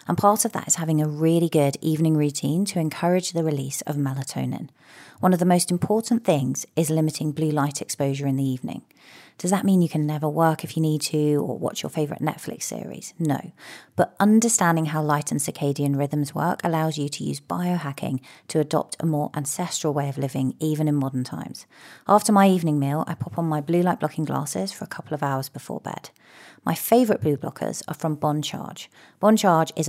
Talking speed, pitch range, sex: 205 wpm, 150-180 Hz, female